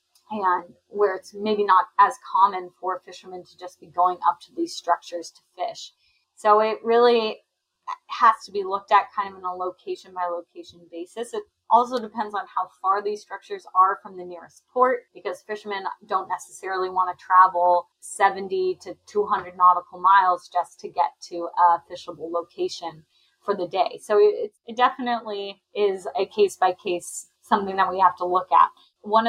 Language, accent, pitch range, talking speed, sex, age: English, American, 185-225 Hz, 180 wpm, female, 20-39